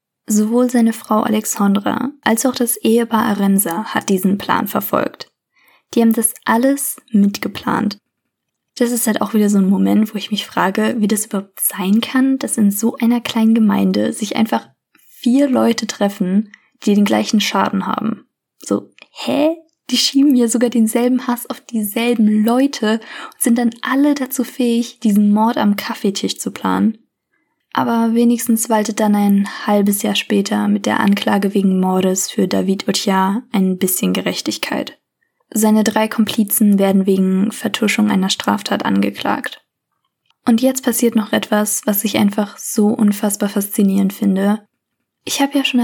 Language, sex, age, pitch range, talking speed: German, female, 20-39, 205-240 Hz, 155 wpm